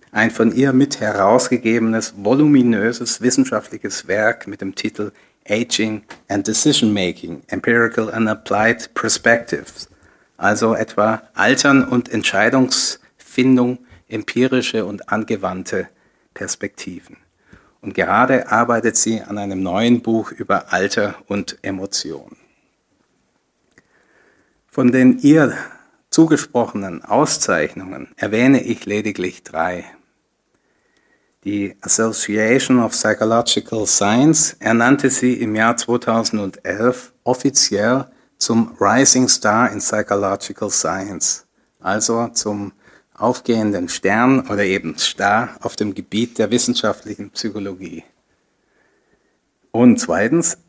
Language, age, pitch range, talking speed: German, 60-79, 105-125 Hz, 95 wpm